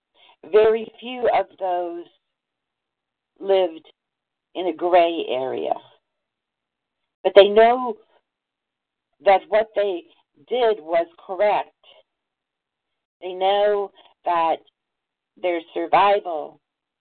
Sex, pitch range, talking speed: female, 170-215 Hz, 80 wpm